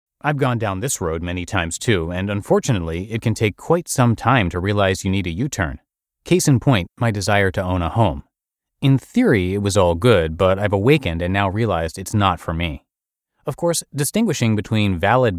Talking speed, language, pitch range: 205 wpm, English, 90-130 Hz